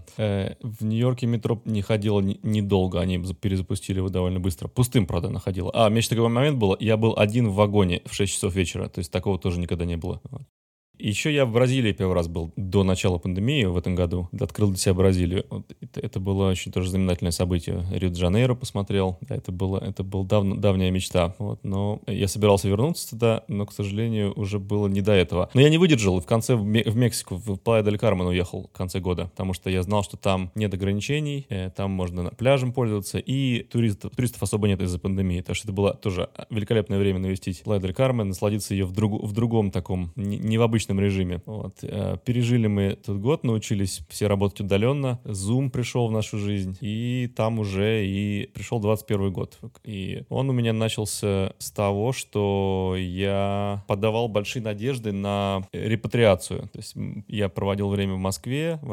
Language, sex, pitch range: Russian, male, 95-115 Hz